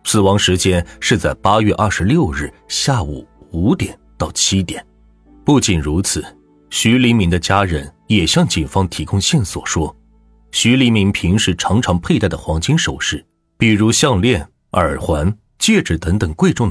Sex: male